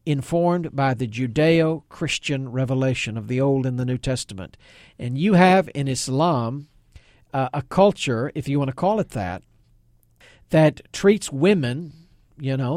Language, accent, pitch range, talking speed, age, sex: English, American, 130-185 Hz, 150 wpm, 50-69, male